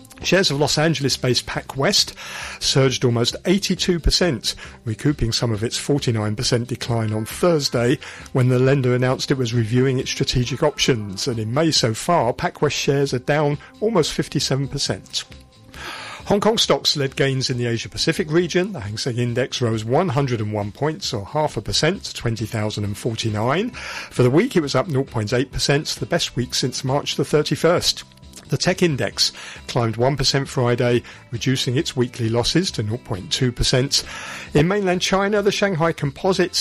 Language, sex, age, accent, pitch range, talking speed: English, male, 50-69, British, 120-160 Hz, 150 wpm